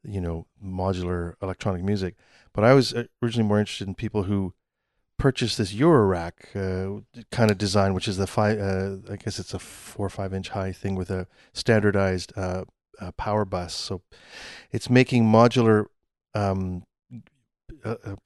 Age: 40-59